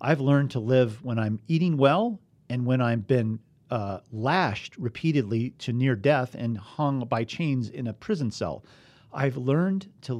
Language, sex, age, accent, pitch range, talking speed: English, male, 40-59, American, 110-140 Hz, 170 wpm